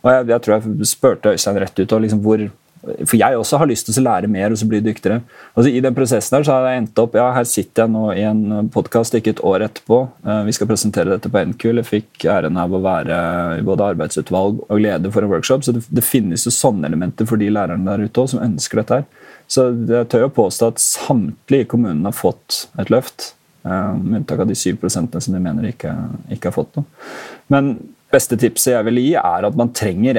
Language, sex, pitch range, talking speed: English, male, 105-130 Hz, 225 wpm